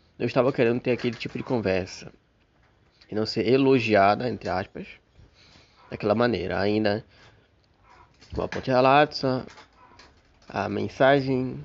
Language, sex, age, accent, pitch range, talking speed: Portuguese, male, 20-39, Brazilian, 110-135 Hz, 115 wpm